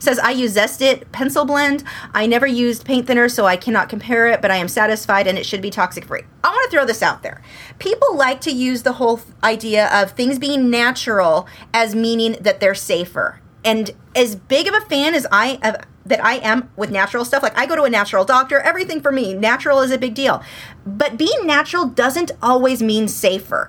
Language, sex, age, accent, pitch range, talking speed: English, female, 30-49, American, 210-275 Hz, 220 wpm